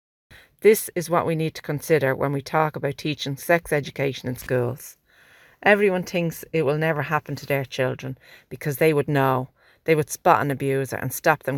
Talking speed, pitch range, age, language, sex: 190 wpm, 135-170 Hz, 40-59, English, female